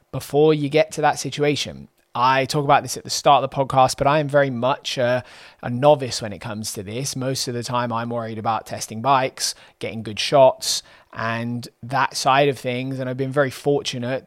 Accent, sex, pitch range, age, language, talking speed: British, male, 115-135 Hz, 20-39, English, 215 wpm